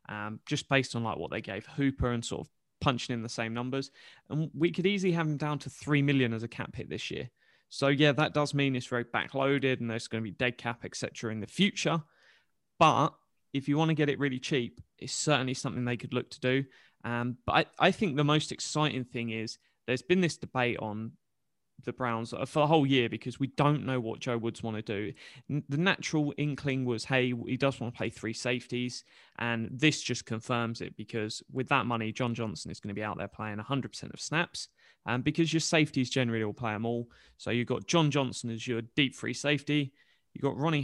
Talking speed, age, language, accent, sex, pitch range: 235 wpm, 20-39, English, British, male, 115-145 Hz